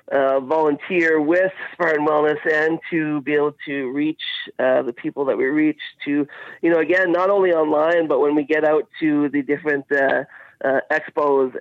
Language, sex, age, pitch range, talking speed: English, male, 30-49, 140-160 Hz, 180 wpm